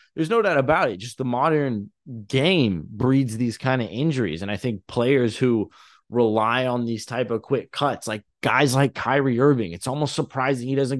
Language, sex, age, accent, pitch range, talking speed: English, male, 20-39, American, 120-145 Hz, 195 wpm